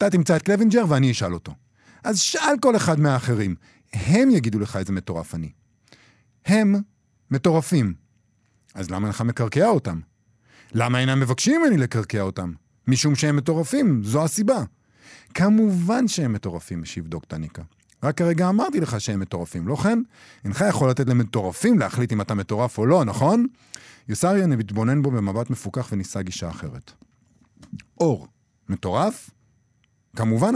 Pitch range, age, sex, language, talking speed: 110-185 Hz, 50-69, male, Hebrew, 135 wpm